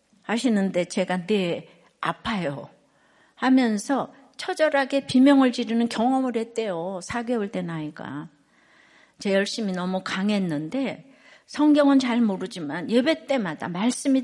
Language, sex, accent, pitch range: Korean, female, native, 210-280 Hz